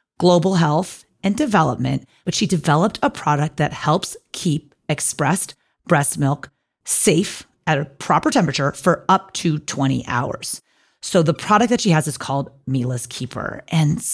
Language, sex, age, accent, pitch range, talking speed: English, female, 40-59, American, 140-190 Hz, 155 wpm